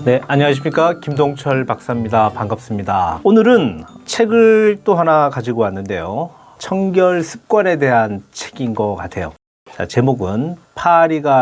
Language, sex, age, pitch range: Korean, male, 40-59, 110-155 Hz